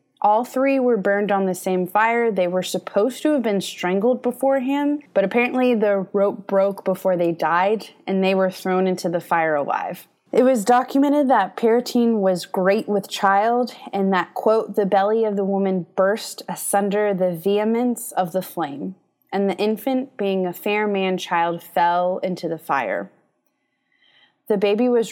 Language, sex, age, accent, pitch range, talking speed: English, female, 20-39, American, 185-230 Hz, 165 wpm